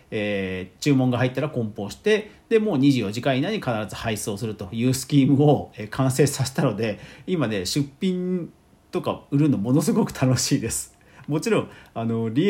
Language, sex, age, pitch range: Japanese, male, 40-59, 105-160 Hz